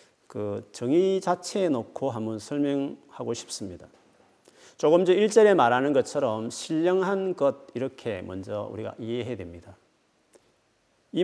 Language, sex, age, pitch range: Korean, male, 40-59, 115-185 Hz